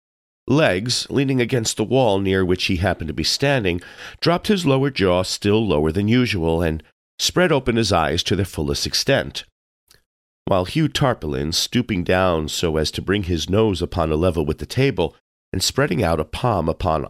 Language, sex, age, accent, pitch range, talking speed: English, male, 50-69, American, 80-110 Hz, 185 wpm